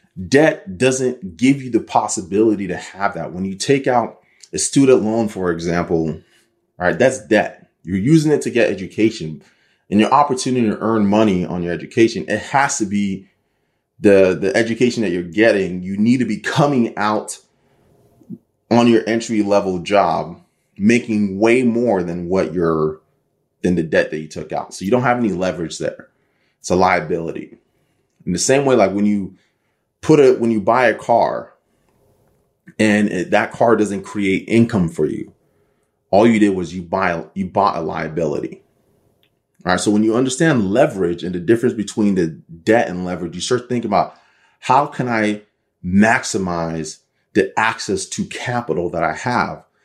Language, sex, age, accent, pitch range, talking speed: English, male, 30-49, American, 90-120 Hz, 170 wpm